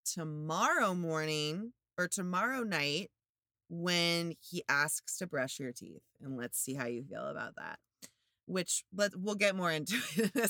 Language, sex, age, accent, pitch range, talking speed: English, female, 30-49, American, 140-190 Hz, 160 wpm